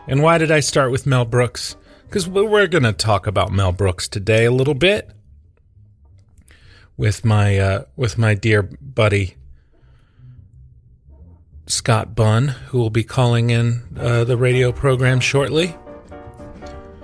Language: English